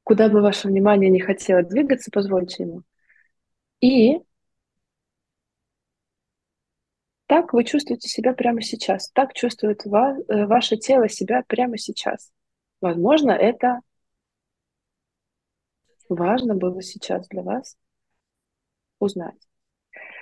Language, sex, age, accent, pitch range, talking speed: Russian, female, 20-39, native, 185-225 Hz, 90 wpm